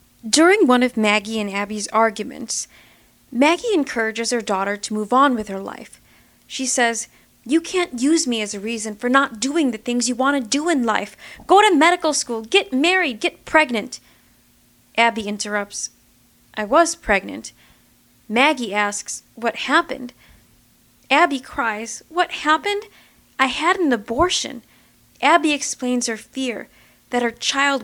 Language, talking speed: English, 150 wpm